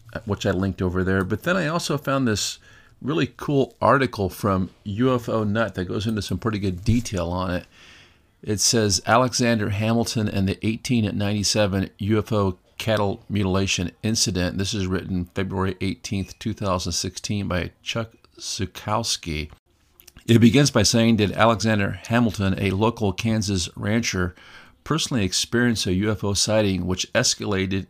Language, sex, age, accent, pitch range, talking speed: English, male, 50-69, American, 95-110 Hz, 140 wpm